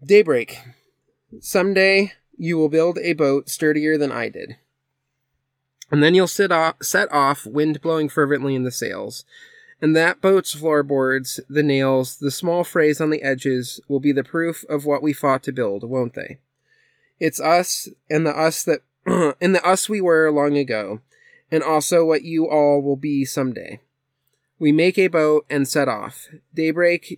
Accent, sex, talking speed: American, male, 170 wpm